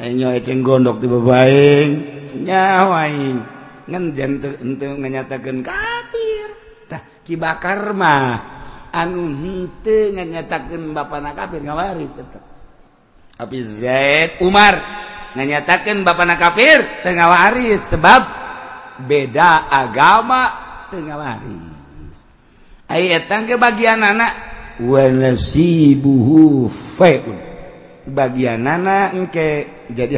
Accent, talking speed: native, 80 wpm